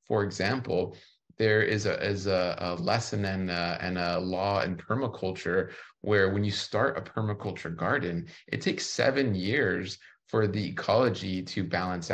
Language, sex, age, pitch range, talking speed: English, male, 30-49, 95-115 Hz, 150 wpm